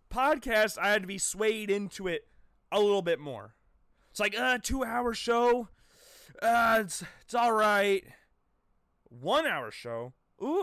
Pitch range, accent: 180-235 Hz, American